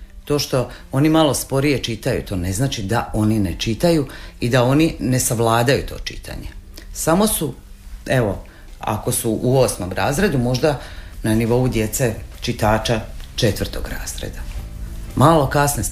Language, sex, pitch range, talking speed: Croatian, female, 110-155 Hz, 145 wpm